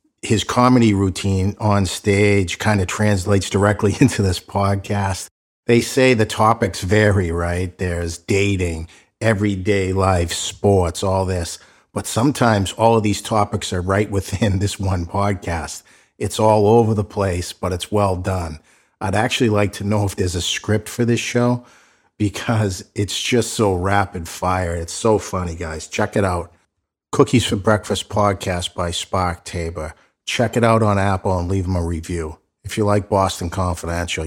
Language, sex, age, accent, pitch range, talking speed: English, male, 50-69, American, 85-105 Hz, 165 wpm